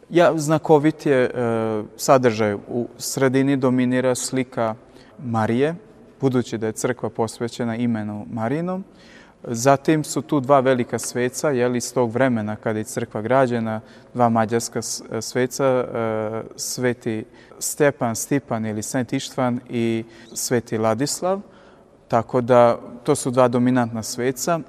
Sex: male